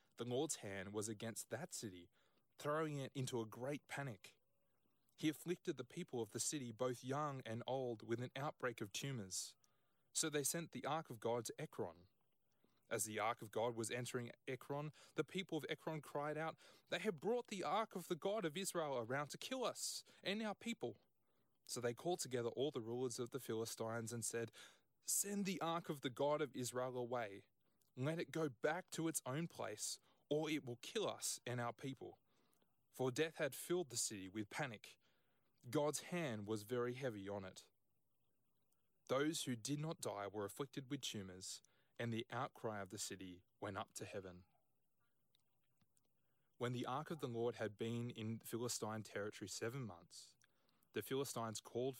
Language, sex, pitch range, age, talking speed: English, male, 115-155 Hz, 20-39, 180 wpm